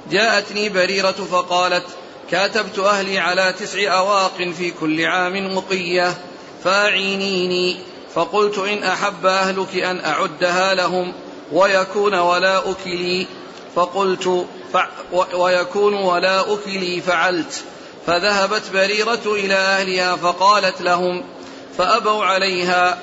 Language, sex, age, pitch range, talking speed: Arabic, male, 40-59, 180-205 Hz, 95 wpm